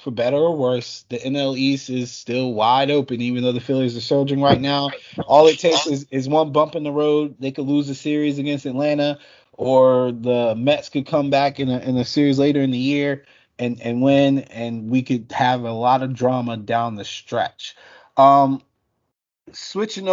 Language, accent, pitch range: English, American, 120-145 Hz